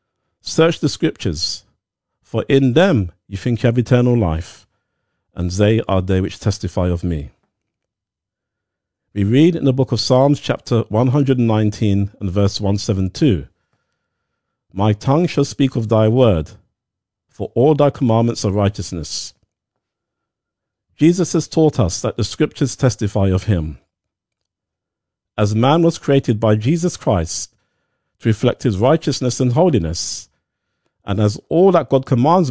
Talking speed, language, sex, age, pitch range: 135 wpm, English, male, 50-69, 95-130 Hz